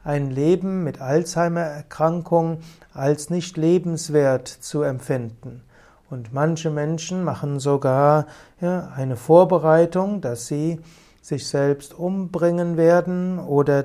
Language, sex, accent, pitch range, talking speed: German, male, German, 145-175 Hz, 105 wpm